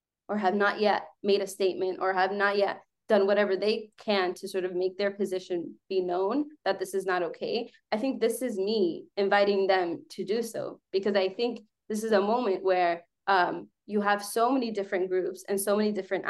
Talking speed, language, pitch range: 210 wpm, English, 185-220 Hz